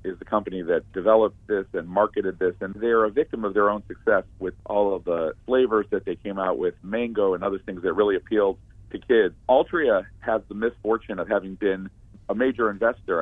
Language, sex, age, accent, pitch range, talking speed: English, male, 40-59, American, 95-110 Hz, 210 wpm